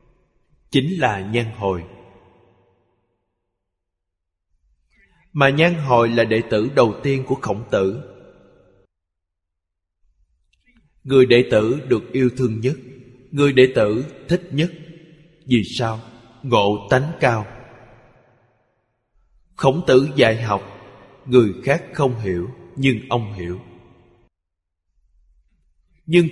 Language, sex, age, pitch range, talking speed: Vietnamese, male, 20-39, 95-135 Hz, 100 wpm